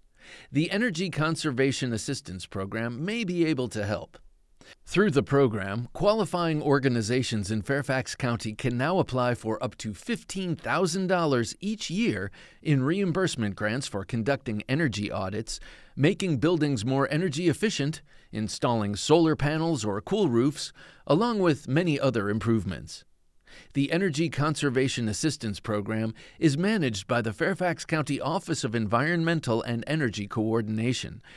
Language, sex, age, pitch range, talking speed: English, male, 40-59, 110-160 Hz, 130 wpm